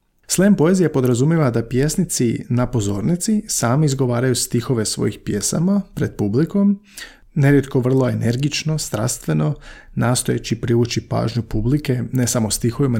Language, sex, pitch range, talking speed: Croatian, male, 115-140 Hz, 115 wpm